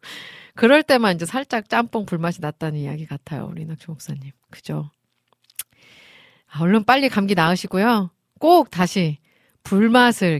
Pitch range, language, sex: 165-270 Hz, Korean, female